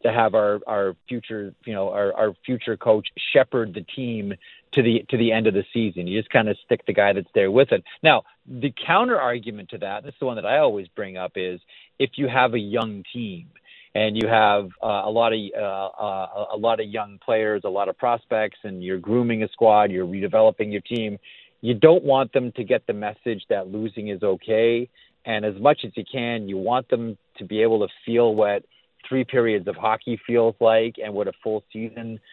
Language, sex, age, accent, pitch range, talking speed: English, male, 40-59, American, 105-120 Hz, 225 wpm